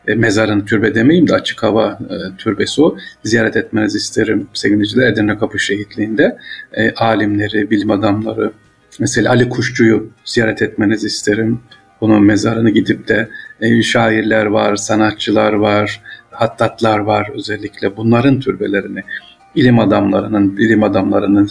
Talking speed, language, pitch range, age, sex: 125 wpm, Turkish, 105-115 Hz, 50-69, male